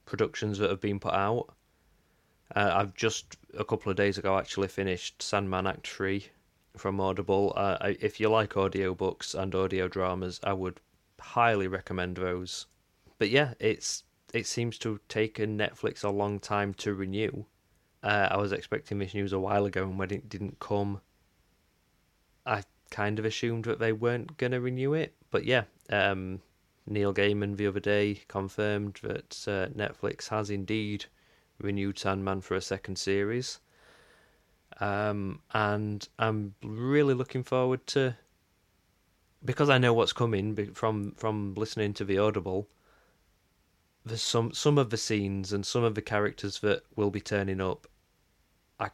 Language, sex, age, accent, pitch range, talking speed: English, male, 20-39, British, 95-110 Hz, 155 wpm